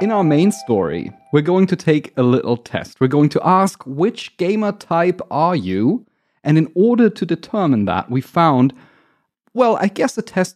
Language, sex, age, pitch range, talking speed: English, male, 30-49, 125-165 Hz, 190 wpm